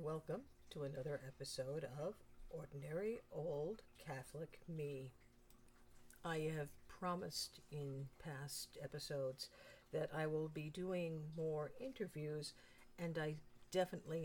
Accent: American